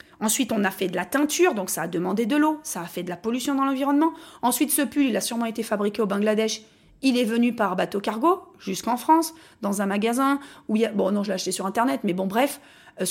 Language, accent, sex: French, French, female